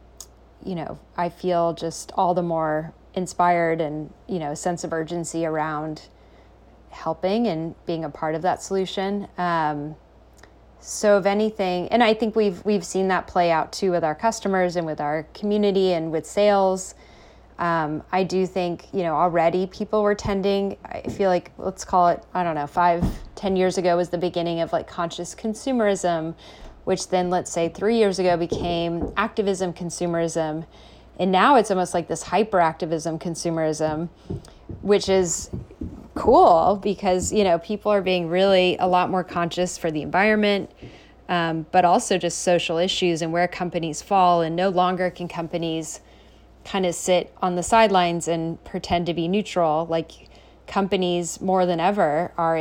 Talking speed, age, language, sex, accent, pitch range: 165 wpm, 30-49, English, female, American, 165-190 Hz